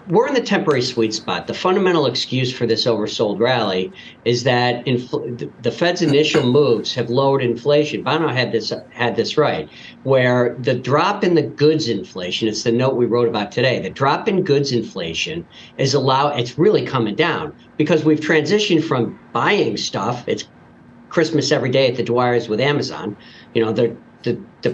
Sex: male